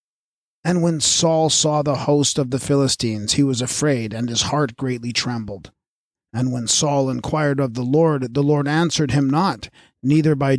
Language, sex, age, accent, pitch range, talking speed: English, male, 40-59, American, 125-155 Hz, 175 wpm